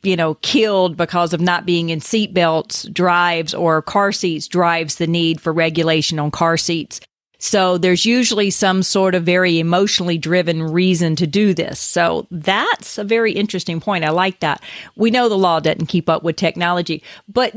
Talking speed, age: 185 wpm, 40-59